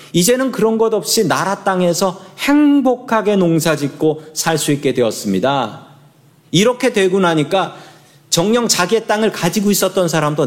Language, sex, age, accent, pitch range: Korean, male, 40-59, native, 140-180 Hz